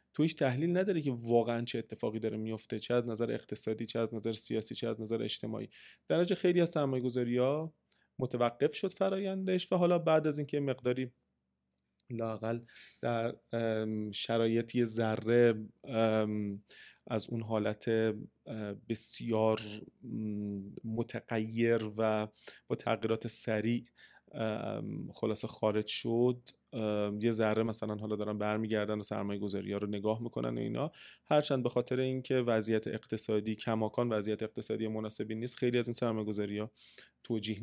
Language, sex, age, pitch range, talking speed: Persian, male, 30-49, 110-135 Hz, 135 wpm